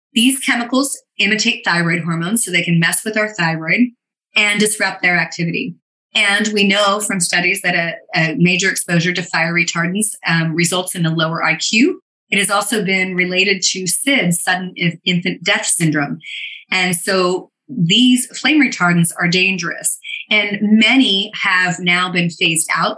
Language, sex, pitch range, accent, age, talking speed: English, female, 170-210 Hz, American, 30-49, 155 wpm